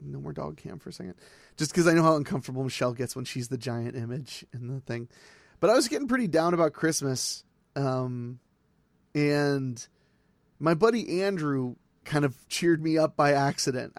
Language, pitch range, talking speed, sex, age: English, 140-185 Hz, 185 wpm, male, 30-49